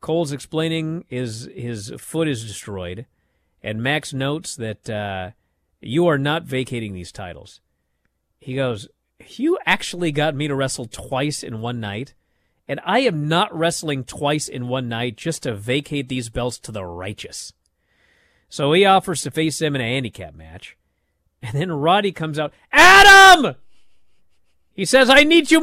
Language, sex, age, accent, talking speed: English, male, 40-59, American, 160 wpm